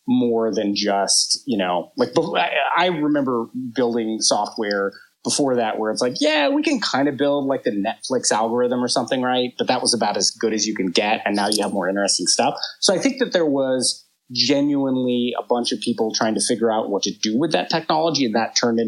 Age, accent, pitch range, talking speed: 30-49, American, 110-160 Hz, 220 wpm